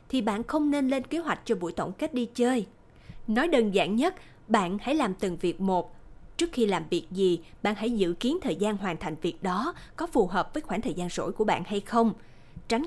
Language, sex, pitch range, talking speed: Vietnamese, female, 180-250 Hz, 240 wpm